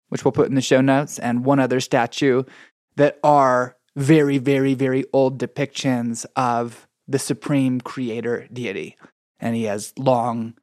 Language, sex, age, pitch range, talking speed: English, male, 20-39, 125-150 Hz, 150 wpm